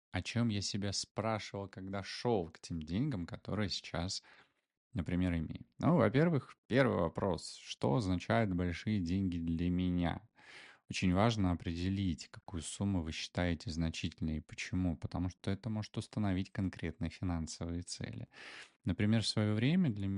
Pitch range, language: 85-105 Hz, Russian